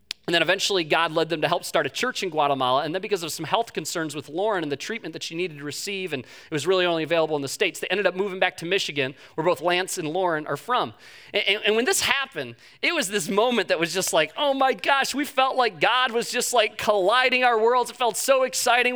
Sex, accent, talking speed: male, American, 265 wpm